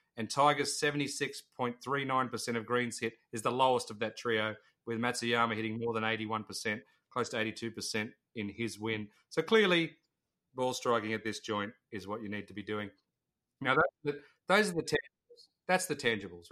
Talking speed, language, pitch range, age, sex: 205 wpm, English, 110-140 Hz, 30-49, male